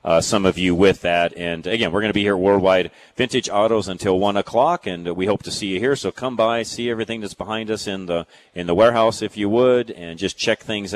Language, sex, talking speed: English, male, 250 wpm